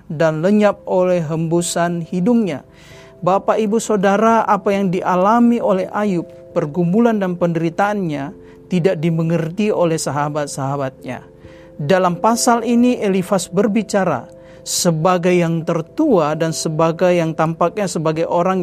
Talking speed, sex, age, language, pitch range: 110 wpm, male, 40-59, Indonesian, 165-200 Hz